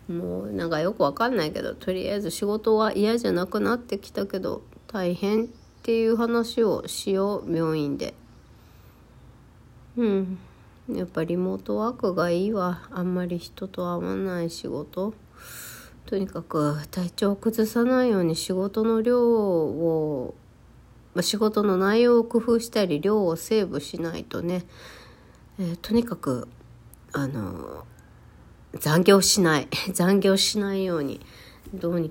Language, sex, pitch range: Japanese, female, 145-215 Hz